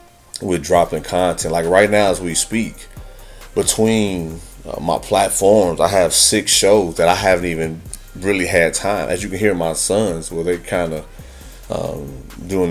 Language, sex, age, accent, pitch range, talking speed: English, male, 30-49, American, 85-95 Hz, 165 wpm